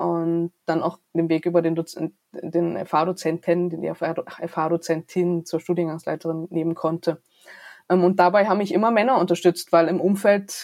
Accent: German